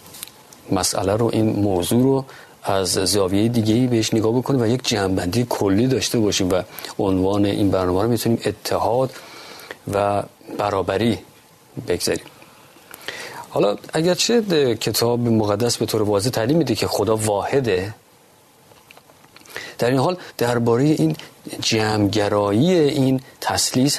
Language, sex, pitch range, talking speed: Persian, male, 105-135 Hz, 120 wpm